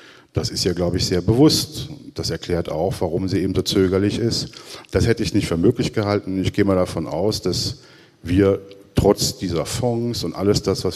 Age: 50-69